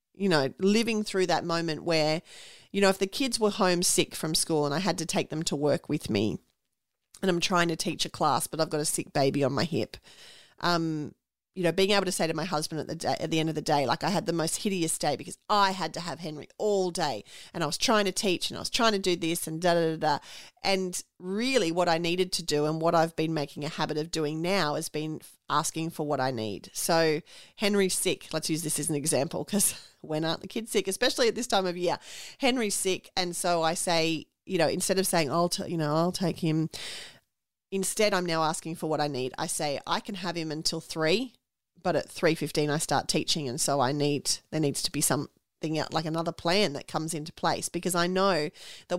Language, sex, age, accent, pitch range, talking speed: English, female, 30-49, Australian, 155-185 Hz, 245 wpm